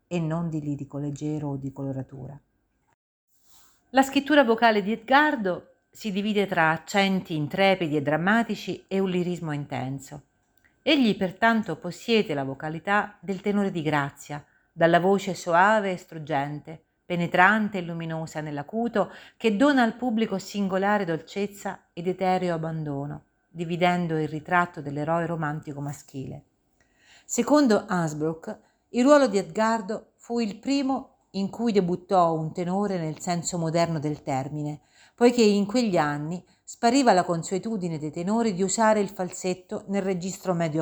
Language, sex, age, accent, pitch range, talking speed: Italian, female, 50-69, native, 155-210 Hz, 135 wpm